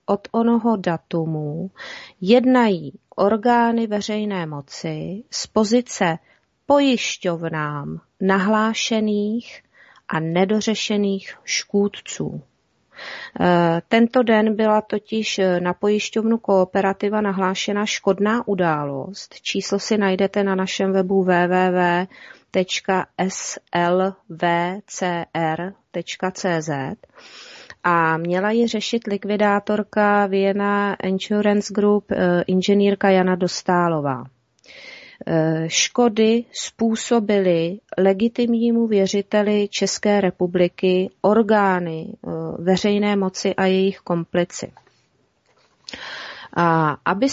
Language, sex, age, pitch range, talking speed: Czech, female, 30-49, 175-215 Hz, 70 wpm